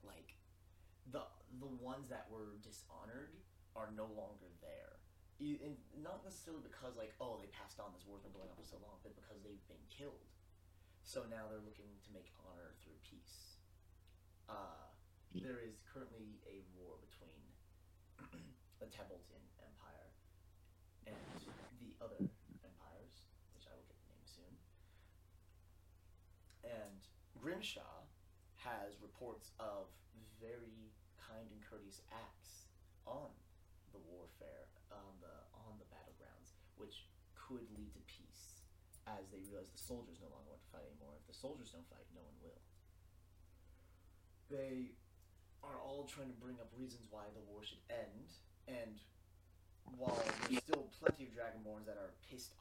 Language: English